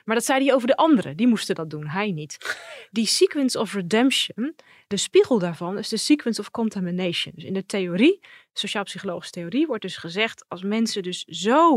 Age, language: 20-39, Dutch